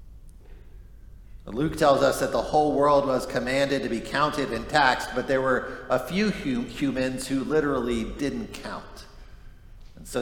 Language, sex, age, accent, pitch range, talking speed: English, male, 50-69, American, 105-135 Hz, 160 wpm